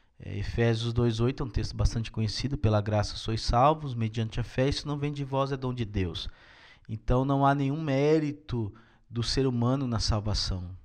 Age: 20-39